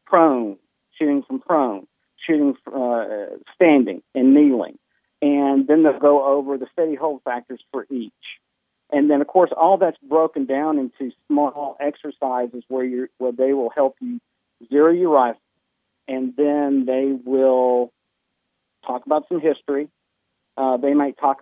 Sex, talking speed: male, 150 wpm